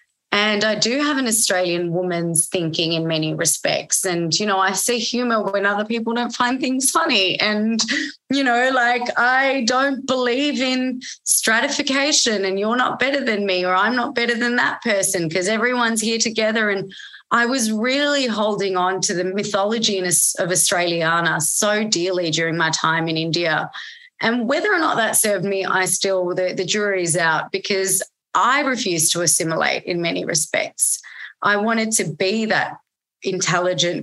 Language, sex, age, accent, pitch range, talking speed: English, female, 20-39, Australian, 180-240 Hz, 170 wpm